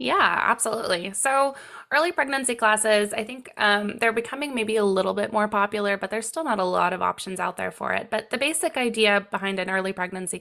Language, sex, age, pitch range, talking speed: English, female, 20-39, 180-215 Hz, 215 wpm